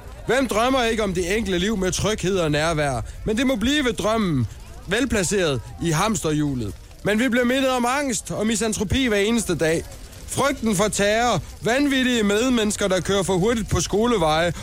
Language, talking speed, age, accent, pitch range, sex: Danish, 170 wpm, 20-39, native, 180-240 Hz, male